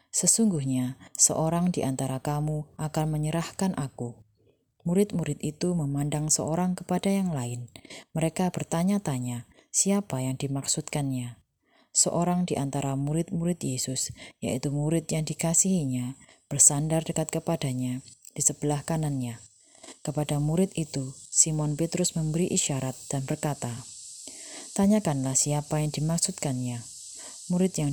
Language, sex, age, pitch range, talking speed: Indonesian, female, 20-39, 135-170 Hz, 105 wpm